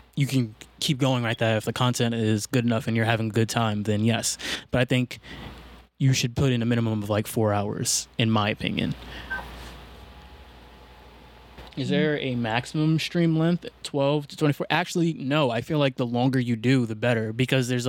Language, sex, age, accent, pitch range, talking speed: English, male, 20-39, American, 115-145 Hz, 195 wpm